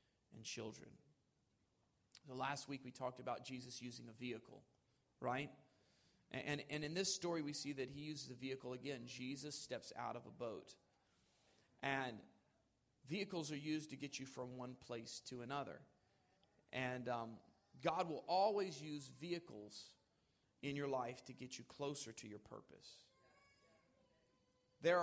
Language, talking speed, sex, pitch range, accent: English, 150 wpm, male, 125-165 Hz, American